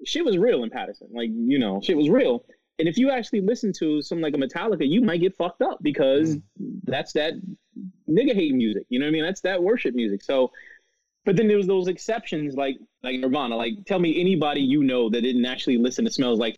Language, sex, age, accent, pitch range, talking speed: English, male, 20-39, American, 130-215 Hz, 230 wpm